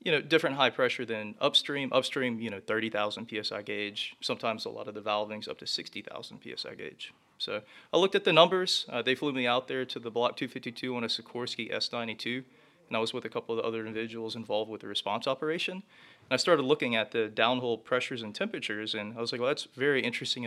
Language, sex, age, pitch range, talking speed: English, male, 30-49, 110-125 Hz, 230 wpm